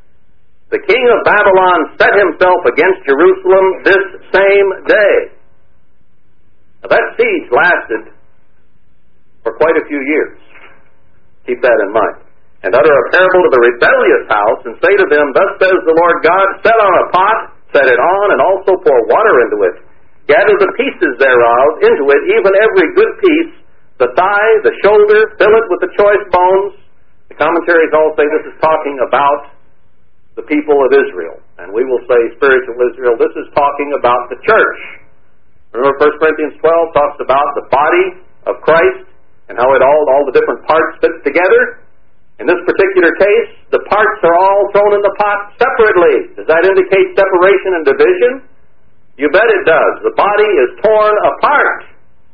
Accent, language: American, English